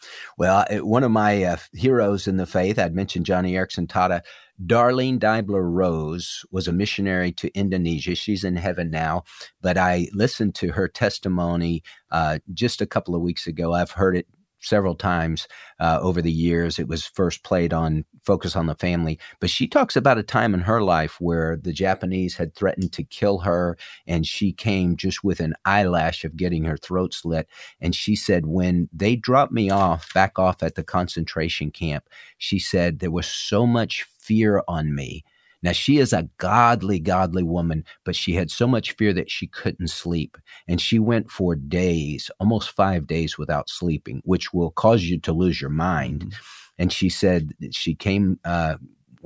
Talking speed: 185 wpm